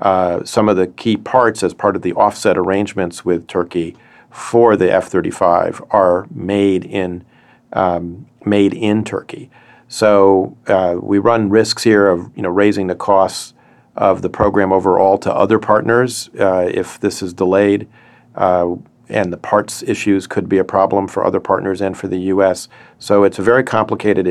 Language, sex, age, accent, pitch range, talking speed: English, male, 40-59, American, 95-105 Hz, 165 wpm